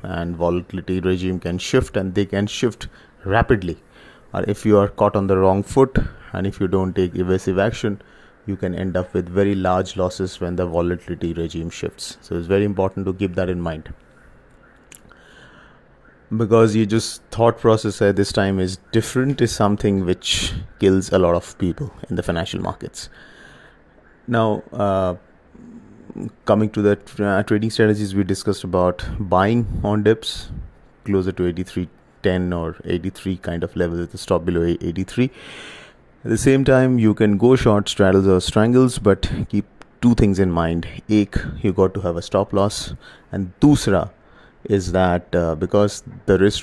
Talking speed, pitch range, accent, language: 165 wpm, 90-105 Hz, Indian, English